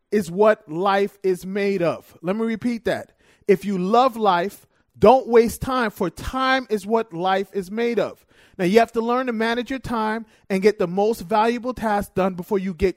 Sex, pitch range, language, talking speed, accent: male, 195-245 Hz, English, 205 wpm, American